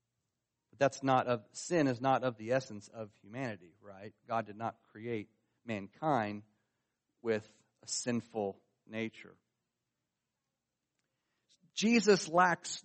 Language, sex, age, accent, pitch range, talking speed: English, male, 40-59, American, 120-175 Hz, 105 wpm